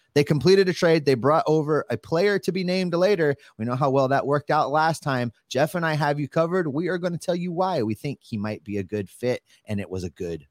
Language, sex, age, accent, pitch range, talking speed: English, male, 30-49, American, 110-180 Hz, 275 wpm